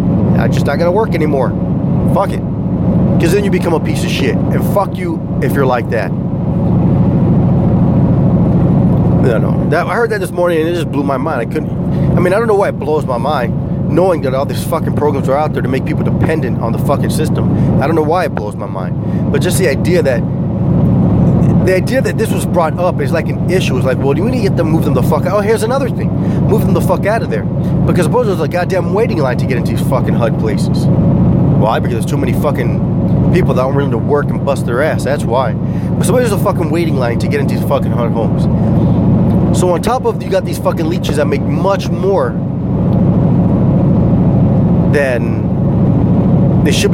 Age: 30-49